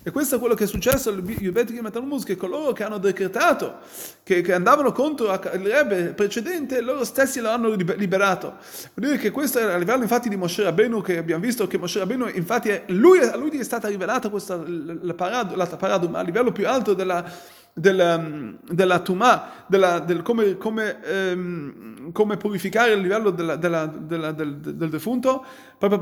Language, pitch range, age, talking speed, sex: Italian, 195-255 Hz, 30-49, 190 wpm, male